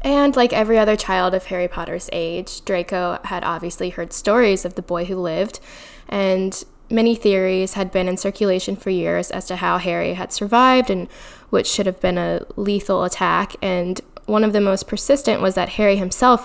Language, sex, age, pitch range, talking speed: English, female, 10-29, 180-210 Hz, 190 wpm